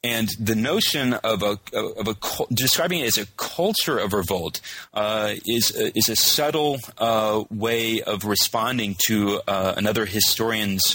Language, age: English, 30-49